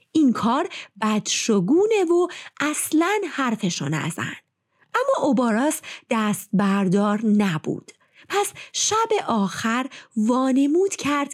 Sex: female